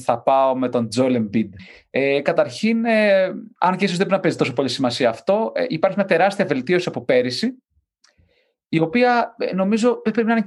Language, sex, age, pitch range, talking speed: Greek, male, 30-49, 125-200 Hz, 185 wpm